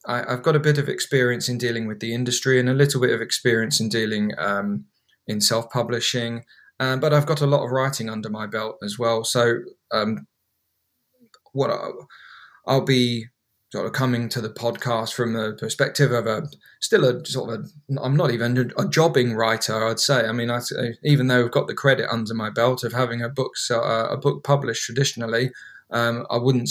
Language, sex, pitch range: English, male, 115-135 Hz